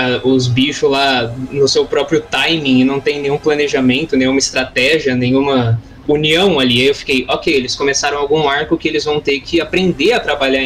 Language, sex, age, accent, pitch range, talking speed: Portuguese, male, 20-39, Brazilian, 140-195 Hz, 185 wpm